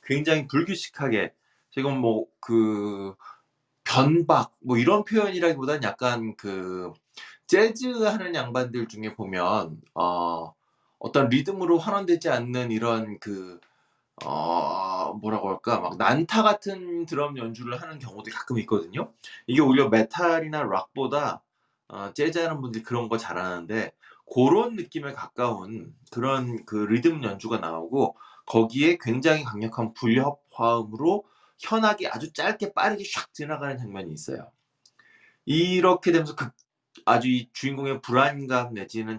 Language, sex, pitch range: Korean, male, 110-165 Hz